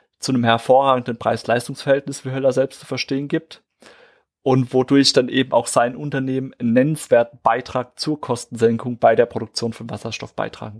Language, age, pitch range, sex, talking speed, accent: German, 30-49, 115-135 Hz, male, 155 wpm, German